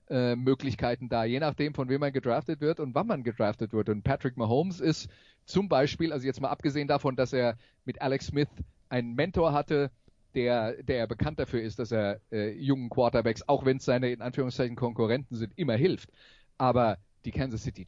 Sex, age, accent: male, 30-49, German